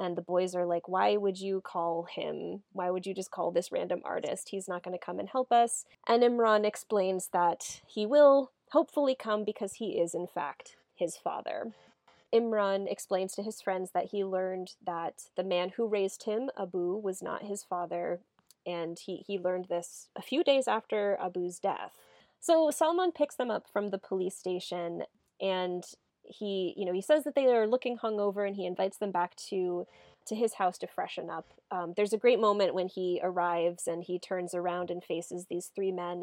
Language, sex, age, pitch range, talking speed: English, female, 20-39, 180-220 Hz, 200 wpm